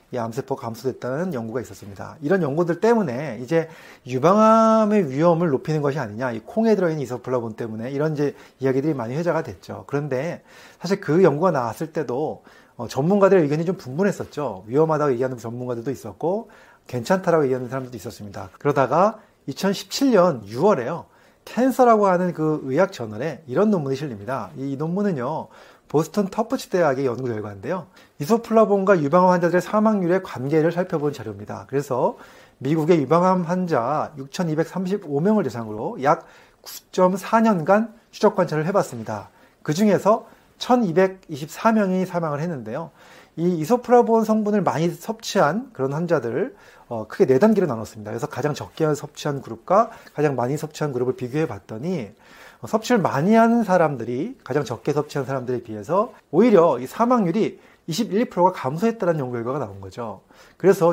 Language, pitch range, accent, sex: Korean, 130-190 Hz, native, male